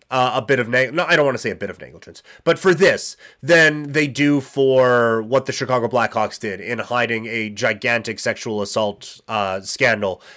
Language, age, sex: English, 30-49, male